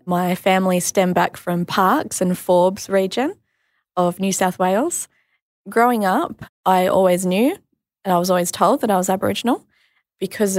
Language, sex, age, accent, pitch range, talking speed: English, female, 20-39, Australian, 180-210 Hz, 160 wpm